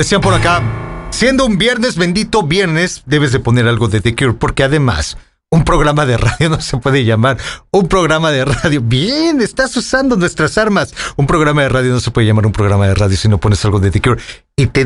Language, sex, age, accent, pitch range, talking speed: English, male, 40-59, Mexican, 120-180 Hz, 220 wpm